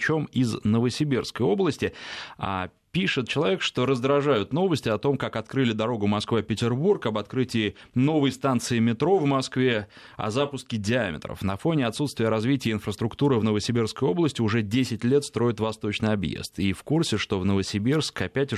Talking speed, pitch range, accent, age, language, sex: 150 wpm, 105-130 Hz, native, 20-39, Russian, male